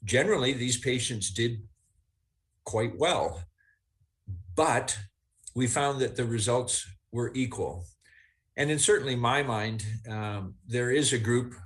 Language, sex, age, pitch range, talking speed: English, male, 50-69, 105-125 Hz, 125 wpm